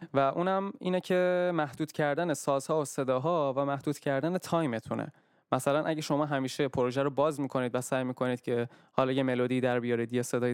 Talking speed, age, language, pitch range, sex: 180 wpm, 20-39, Persian, 130-165 Hz, male